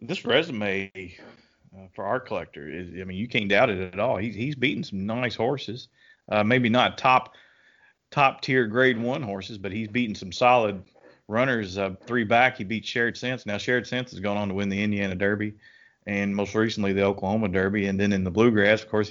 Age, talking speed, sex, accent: 30-49, 210 wpm, male, American